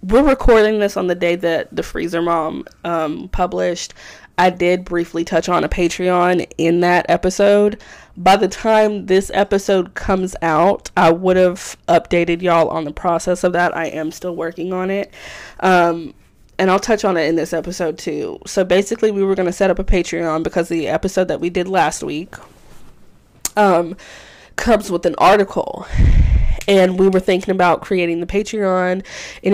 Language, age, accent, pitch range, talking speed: English, 20-39, American, 165-195 Hz, 175 wpm